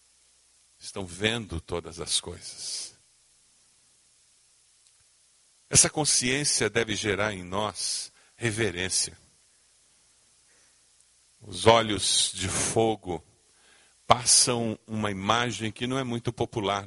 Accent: Brazilian